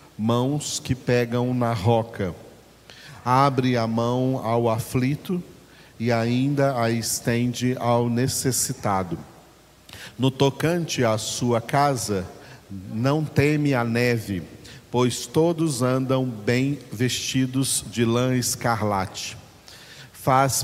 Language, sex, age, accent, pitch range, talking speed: Portuguese, male, 40-59, Brazilian, 115-135 Hz, 100 wpm